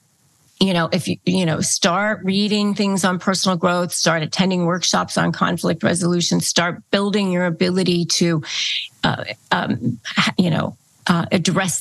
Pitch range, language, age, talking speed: 175-215 Hz, English, 40-59, 145 wpm